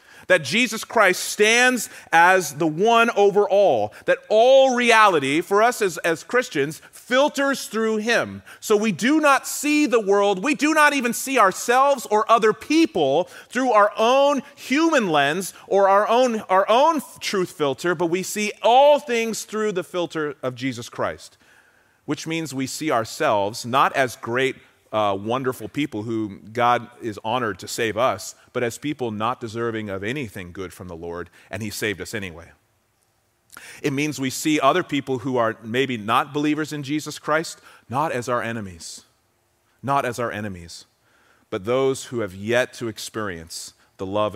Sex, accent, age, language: male, American, 30-49, English